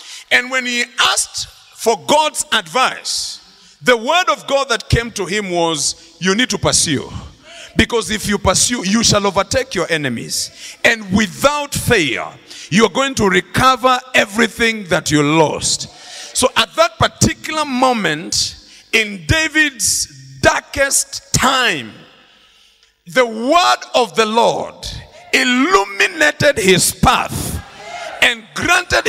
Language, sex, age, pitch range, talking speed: English, male, 50-69, 205-285 Hz, 120 wpm